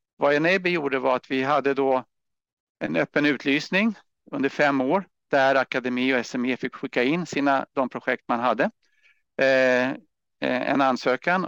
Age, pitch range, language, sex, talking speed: 50-69, 120-145 Hz, Swedish, male, 150 wpm